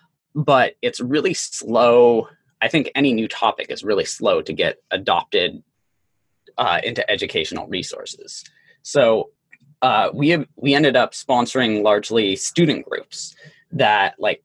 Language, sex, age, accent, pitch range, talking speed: English, male, 20-39, American, 110-155 Hz, 135 wpm